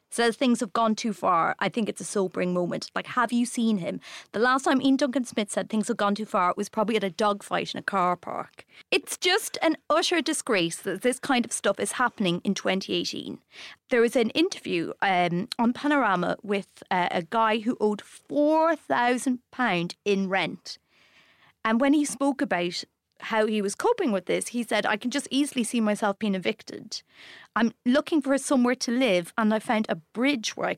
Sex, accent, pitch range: female, British, 215-290 Hz